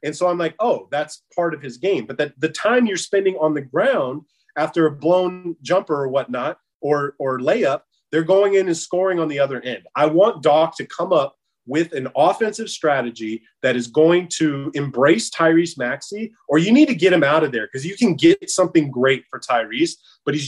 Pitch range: 150-195 Hz